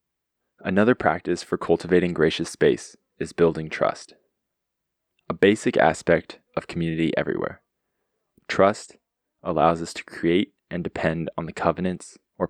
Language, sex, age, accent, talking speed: English, male, 20-39, American, 125 wpm